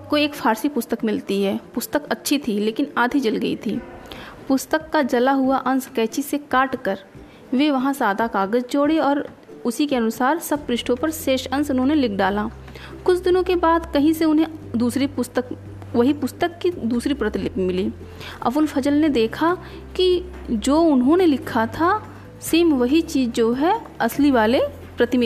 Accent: native